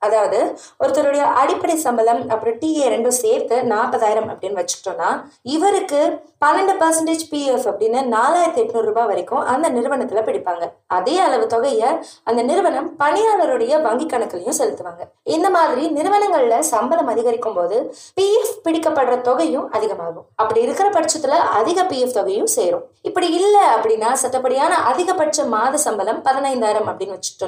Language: Tamil